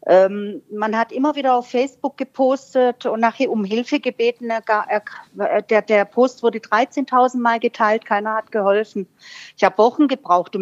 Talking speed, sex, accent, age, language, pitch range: 145 wpm, female, German, 40-59, German, 200-250 Hz